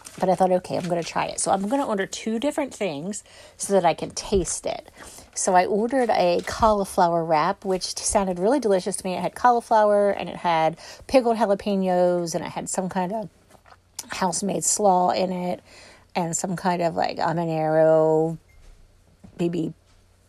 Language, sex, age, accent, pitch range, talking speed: English, female, 40-59, American, 165-215 Hz, 175 wpm